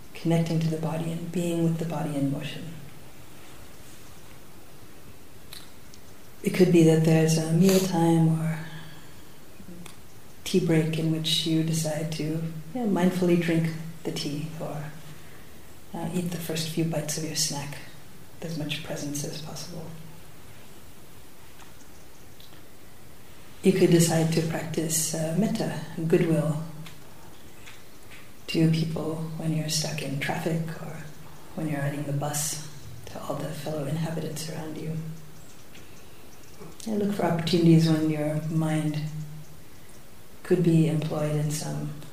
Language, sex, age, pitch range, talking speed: English, female, 40-59, 150-165 Hz, 120 wpm